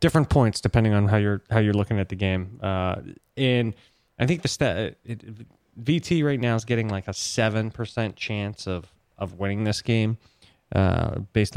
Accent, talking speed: American, 190 wpm